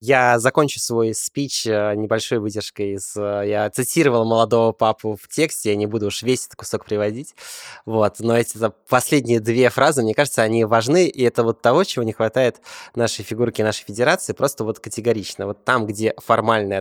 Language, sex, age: Russian, male, 20-39